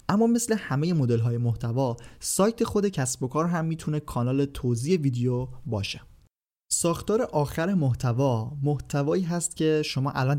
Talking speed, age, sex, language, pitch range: 145 wpm, 30-49, male, Persian, 120-150 Hz